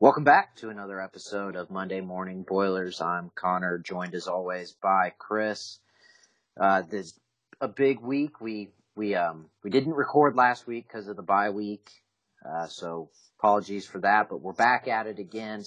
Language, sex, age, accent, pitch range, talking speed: English, male, 30-49, American, 95-110 Hz, 175 wpm